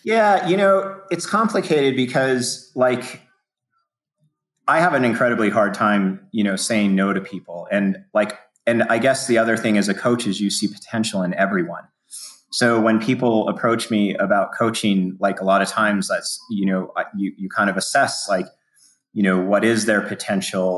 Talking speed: 180 wpm